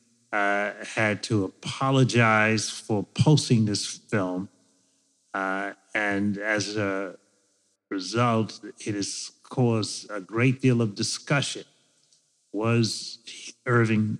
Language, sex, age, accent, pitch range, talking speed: English, male, 30-49, American, 100-120 Hz, 95 wpm